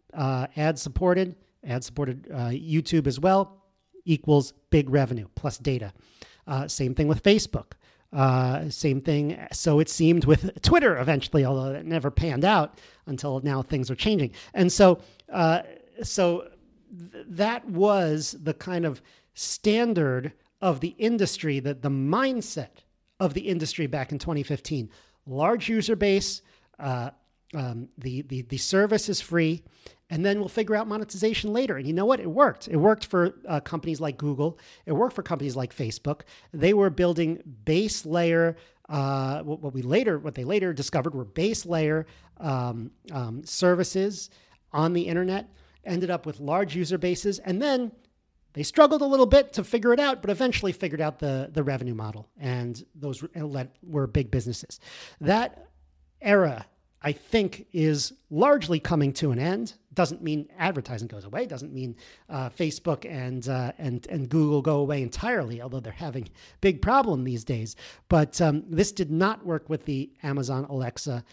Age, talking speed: 40-59, 165 wpm